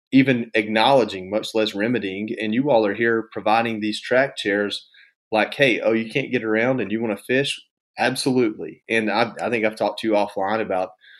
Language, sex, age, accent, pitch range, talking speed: English, male, 30-49, American, 100-125 Hz, 200 wpm